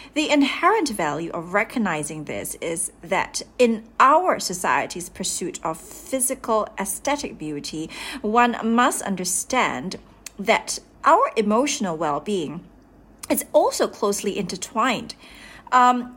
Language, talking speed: English, 110 wpm